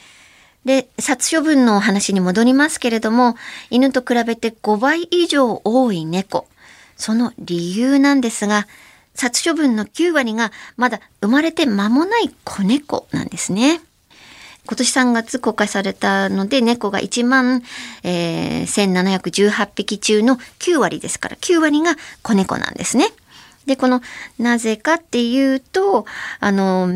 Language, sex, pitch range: Japanese, male, 195-255 Hz